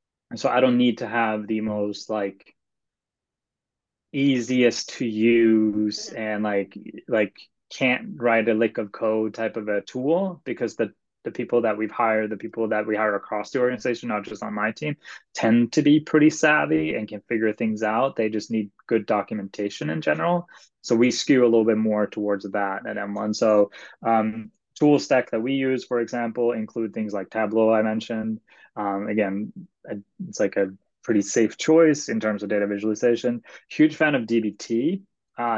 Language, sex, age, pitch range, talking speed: English, male, 20-39, 105-125 Hz, 180 wpm